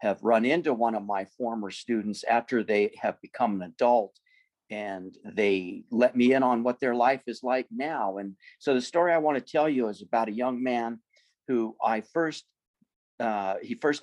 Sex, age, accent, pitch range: male, 50-69, American, 110-150 Hz